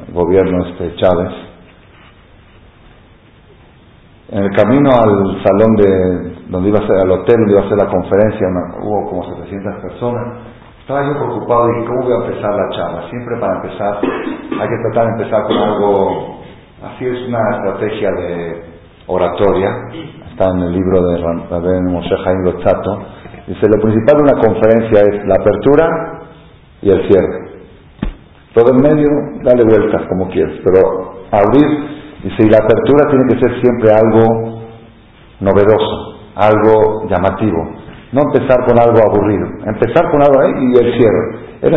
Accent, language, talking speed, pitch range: Spanish, Spanish, 155 wpm, 95-125 Hz